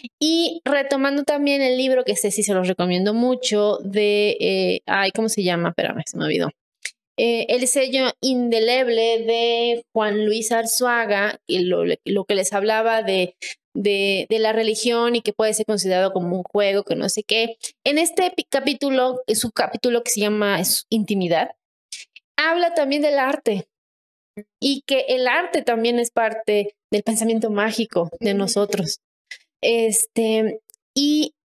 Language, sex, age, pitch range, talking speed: Spanish, female, 20-39, 210-255 Hz, 155 wpm